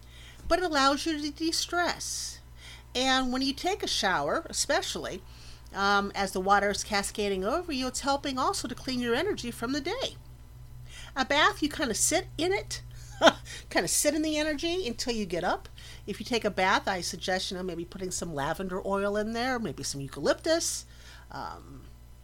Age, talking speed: 50-69, 185 wpm